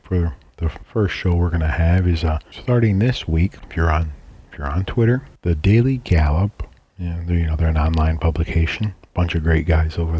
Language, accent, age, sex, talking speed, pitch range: English, American, 40-59, male, 205 wpm, 80-100 Hz